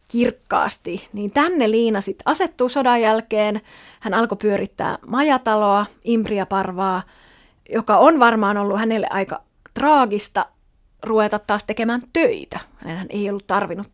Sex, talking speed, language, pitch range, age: female, 120 wpm, Finnish, 200-245 Hz, 30-49